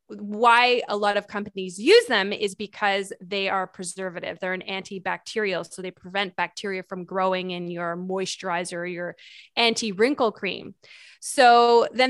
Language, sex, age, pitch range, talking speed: English, female, 20-39, 195-230 Hz, 150 wpm